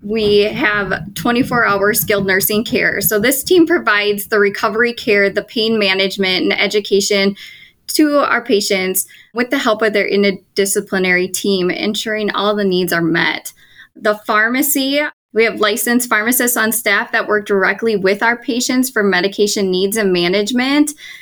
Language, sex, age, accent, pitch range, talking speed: English, female, 10-29, American, 200-240 Hz, 150 wpm